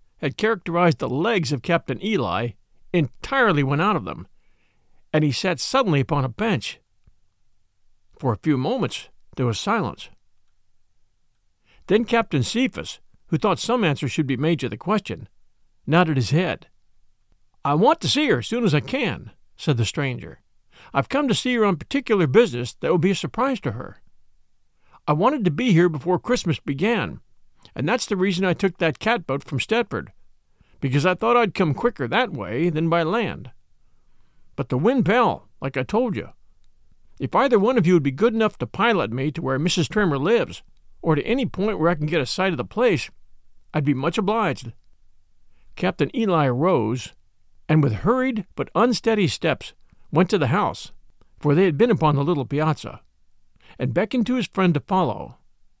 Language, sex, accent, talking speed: English, male, American, 180 wpm